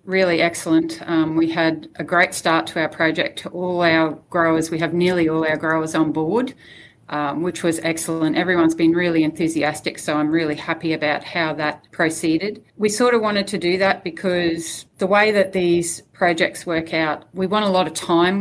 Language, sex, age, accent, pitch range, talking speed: English, female, 40-59, Australian, 160-175 Hz, 195 wpm